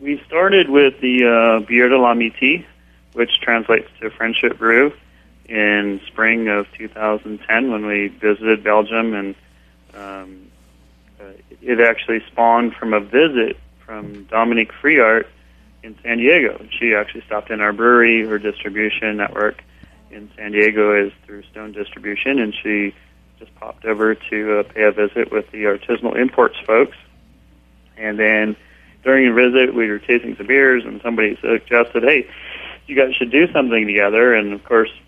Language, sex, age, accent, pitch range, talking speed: English, male, 30-49, American, 100-115 Hz, 150 wpm